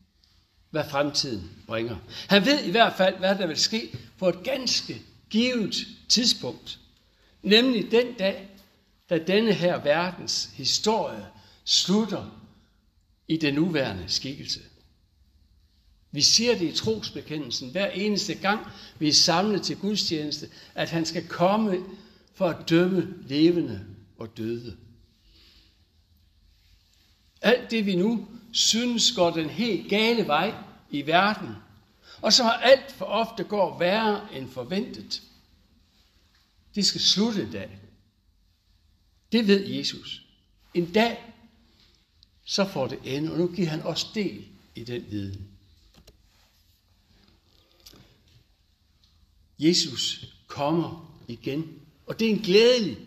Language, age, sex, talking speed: Danish, 60-79, male, 120 wpm